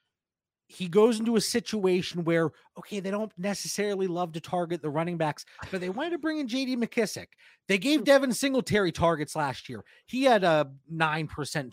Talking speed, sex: 180 wpm, male